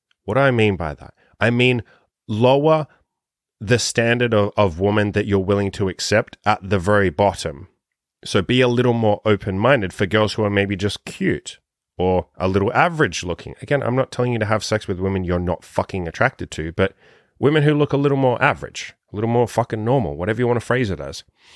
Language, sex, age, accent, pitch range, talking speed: English, male, 30-49, Australian, 100-130 Hz, 210 wpm